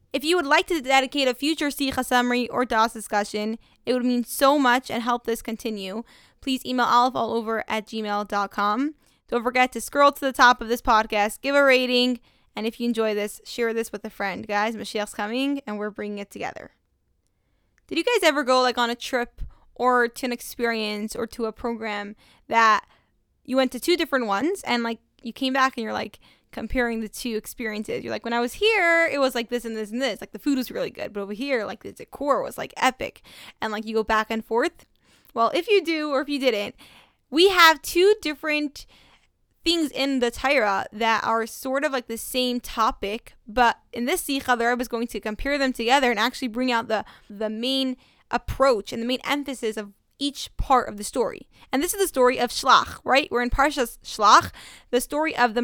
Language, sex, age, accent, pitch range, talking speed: English, female, 10-29, American, 225-270 Hz, 215 wpm